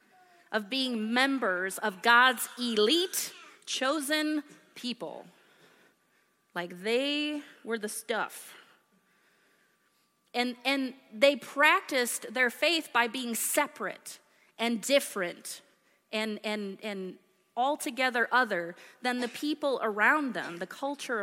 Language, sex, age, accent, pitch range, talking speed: English, female, 30-49, American, 210-290 Hz, 100 wpm